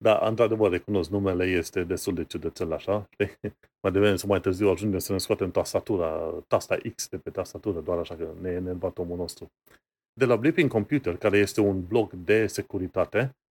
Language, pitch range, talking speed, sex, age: Romanian, 95-130 Hz, 180 wpm, male, 30-49